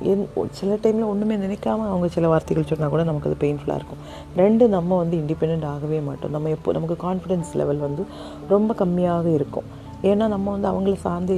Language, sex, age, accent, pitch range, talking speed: Tamil, female, 30-49, native, 150-190 Hz, 180 wpm